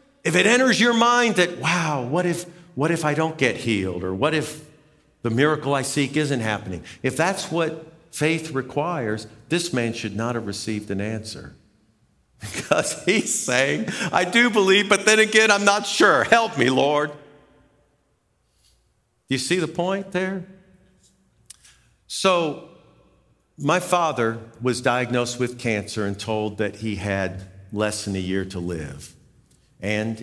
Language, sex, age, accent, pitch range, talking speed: English, male, 50-69, American, 105-155 Hz, 155 wpm